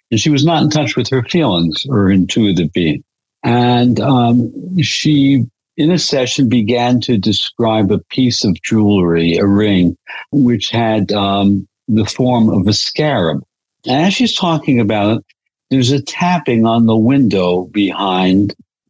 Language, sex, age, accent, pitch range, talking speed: English, male, 60-79, American, 100-120 Hz, 150 wpm